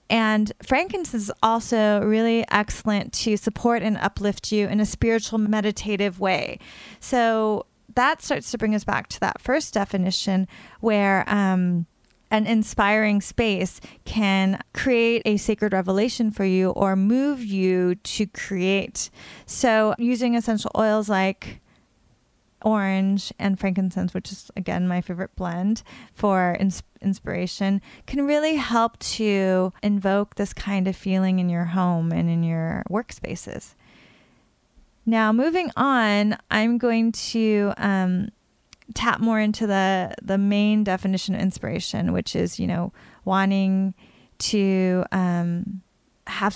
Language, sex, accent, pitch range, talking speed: English, female, American, 190-220 Hz, 130 wpm